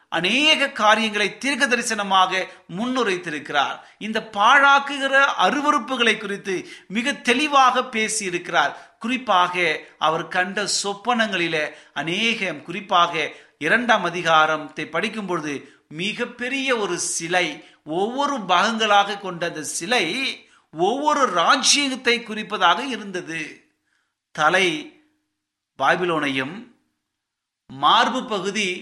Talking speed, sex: 80 wpm, male